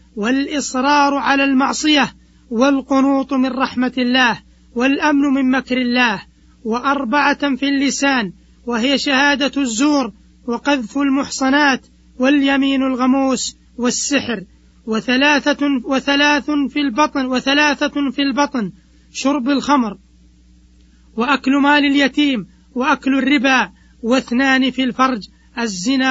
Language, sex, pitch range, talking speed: Arabic, male, 250-280 Hz, 90 wpm